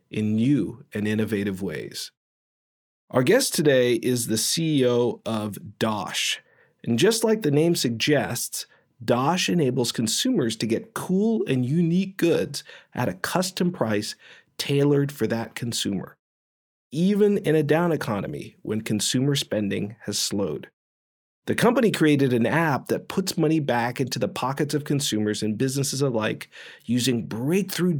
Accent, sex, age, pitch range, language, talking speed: American, male, 40-59, 110-155 Hz, English, 140 wpm